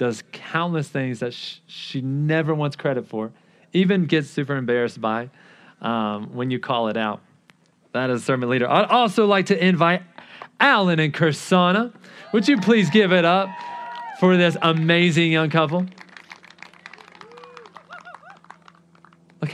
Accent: American